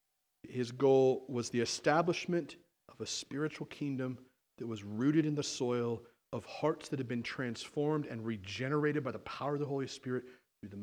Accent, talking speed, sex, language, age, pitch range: American, 175 wpm, male, English, 40-59, 125-165 Hz